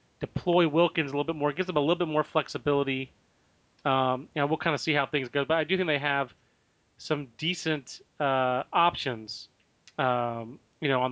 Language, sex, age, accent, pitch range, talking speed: English, male, 30-49, American, 135-175 Hz, 205 wpm